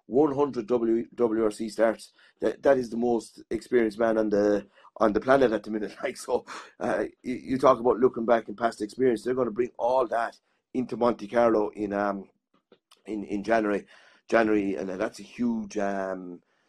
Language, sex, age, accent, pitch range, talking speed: English, male, 30-49, British, 105-120 Hz, 185 wpm